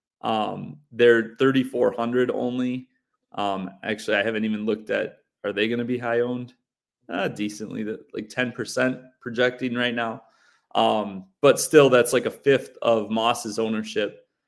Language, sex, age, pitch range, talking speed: English, male, 30-49, 110-135 Hz, 150 wpm